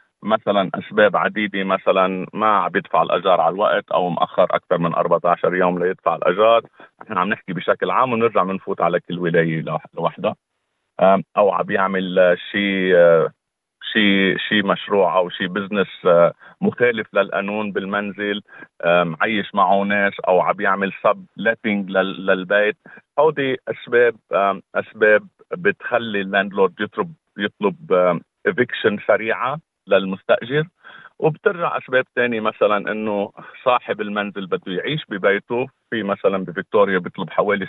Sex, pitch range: male, 95-115 Hz